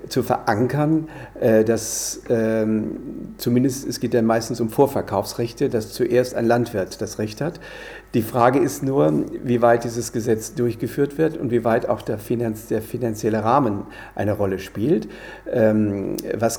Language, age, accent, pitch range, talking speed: German, 60-79, German, 110-130 Hz, 145 wpm